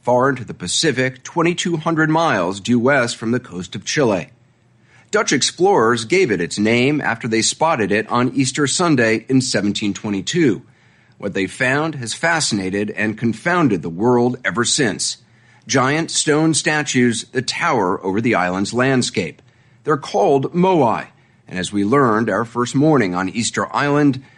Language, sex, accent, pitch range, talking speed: English, male, American, 100-135 Hz, 150 wpm